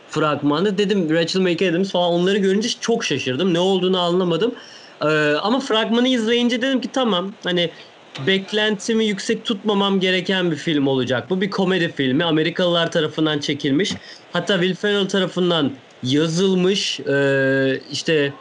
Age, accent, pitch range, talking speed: 30-49, native, 155-200 Hz, 125 wpm